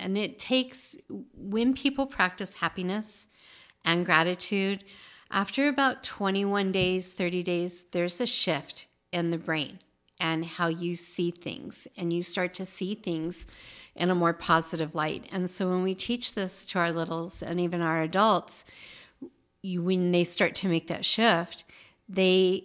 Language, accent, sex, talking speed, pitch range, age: English, American, female, 155 wpm, 170-190 Hz, 50-69